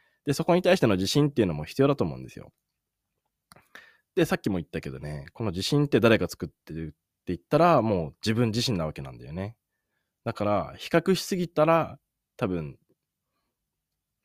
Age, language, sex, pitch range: 20-39, Japanese, male, 80-120 Hz